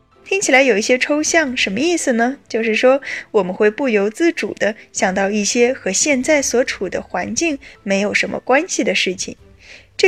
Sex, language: female, Chinese